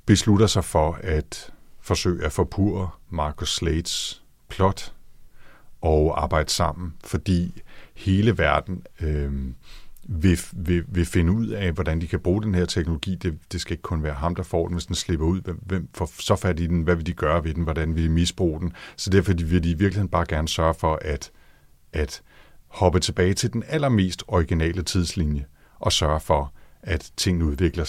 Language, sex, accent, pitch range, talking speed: Danish, male, native, 80-95 Hz, 185 wpm